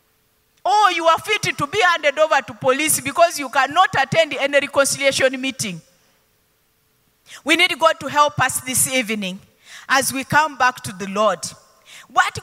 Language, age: English, 40-59